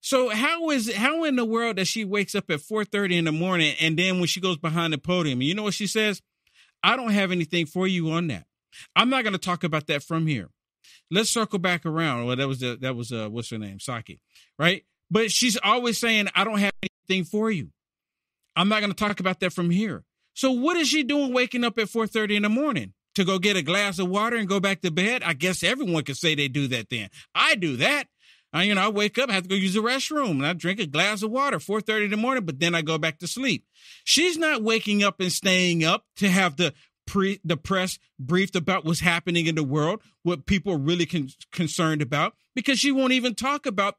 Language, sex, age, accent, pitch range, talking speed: English, male, 50-69, American, 170-230 Hz, 250 wpm